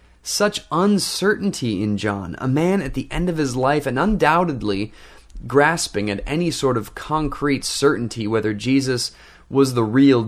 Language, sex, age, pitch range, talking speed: English, male, 30-49, 100-140 Hz, 150 wpm